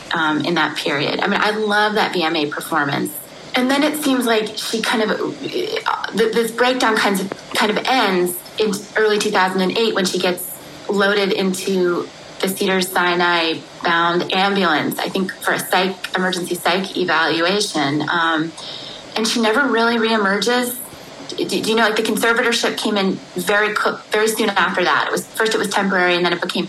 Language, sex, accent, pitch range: English, female, American, 185-230 Hz